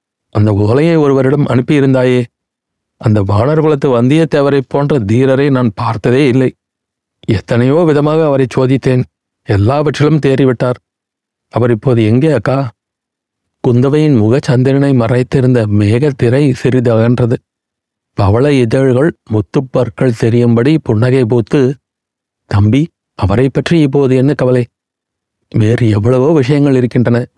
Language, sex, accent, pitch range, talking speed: Tamil, male, native, 115-145 Hz, 95 wpm